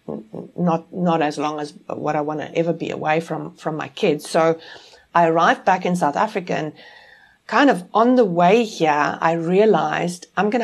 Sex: female